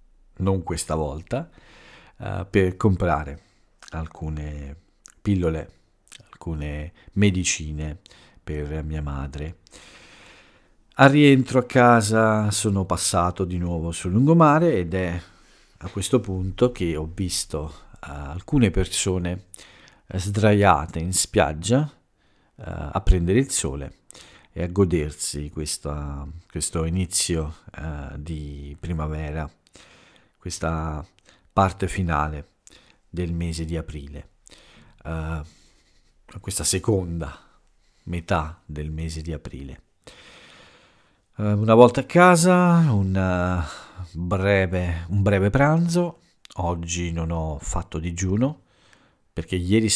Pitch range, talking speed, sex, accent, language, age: 80-100 Hz, 95 wpm, male, native, Italian, 50-69